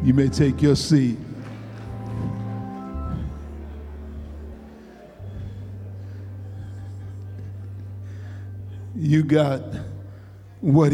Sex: male